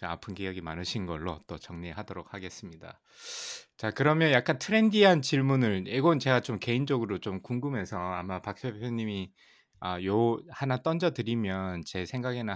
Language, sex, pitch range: Korean, male, 95-125 Hz